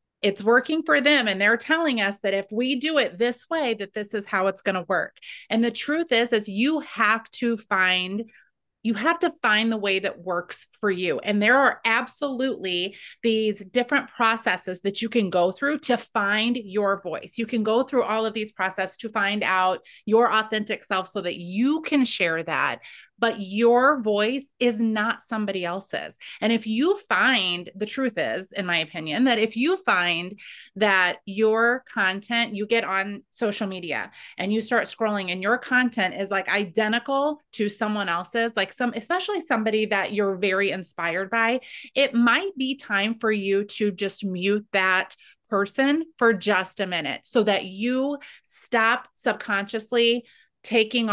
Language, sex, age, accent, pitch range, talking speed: English, female, 30-49, American, 195-240 Hz, 175 wpm